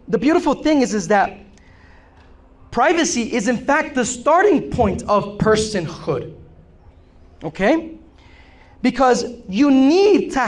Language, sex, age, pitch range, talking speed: English, male, 30-49, 190-260 Hz, 115 wpm